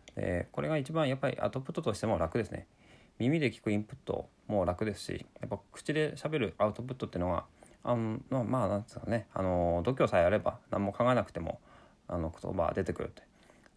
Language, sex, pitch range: Japanese, male, 95-125 Hz